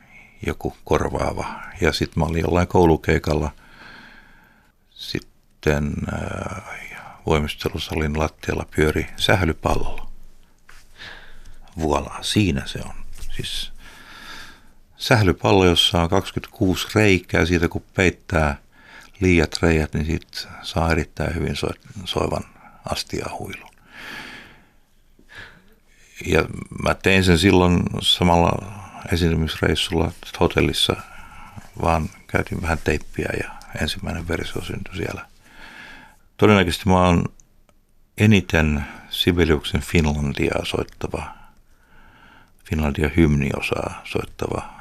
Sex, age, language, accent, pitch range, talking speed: male, 60-79, Finnish, native, 80-95 Hz, 85 wpm